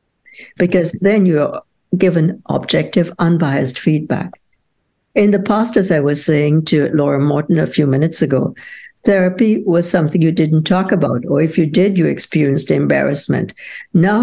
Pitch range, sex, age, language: 145-185 Hz, female, 60-79, English